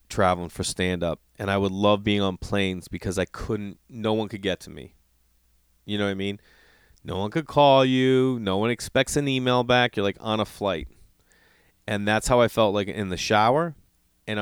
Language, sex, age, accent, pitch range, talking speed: English, male, 30-49, American, 90-130 Hz, 210 wpm